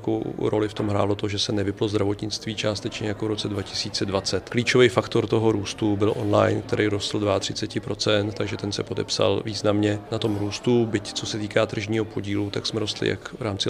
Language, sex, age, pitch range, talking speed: Czech, male, 40-59, 105-115 Hz, 195 wpm